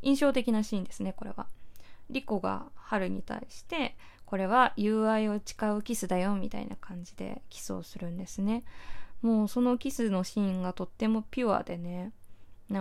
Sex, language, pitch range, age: female, Japanese, 185-230 Hz, 20-39